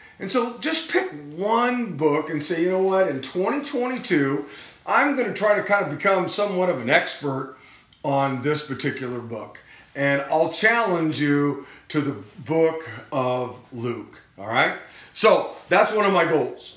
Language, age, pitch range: English, 40-59, 130-185 Hz